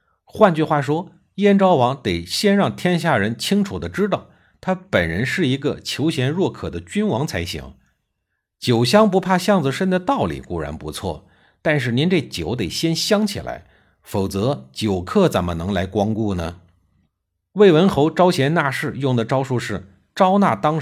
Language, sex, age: Chinese, male, 50-69